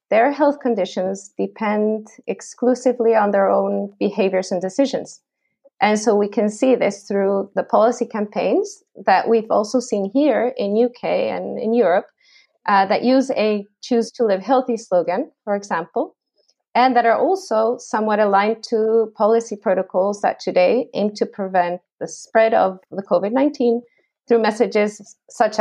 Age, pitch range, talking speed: 30-49, 195-240 Hz, 150 wpm